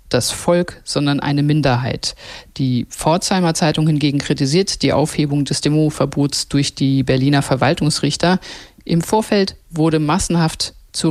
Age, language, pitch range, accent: 50-69, German, 140-170 Hz, German